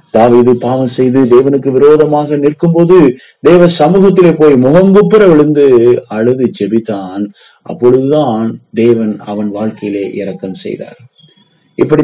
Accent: native